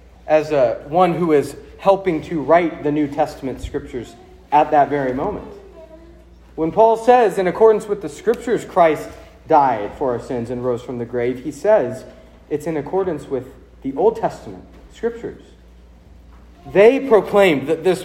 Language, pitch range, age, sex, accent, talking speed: English, 125-200 Hz, 40-59, male, American, 155 wpm